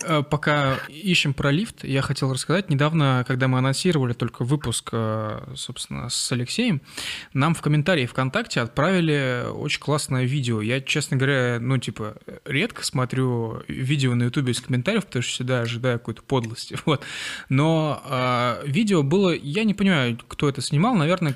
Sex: male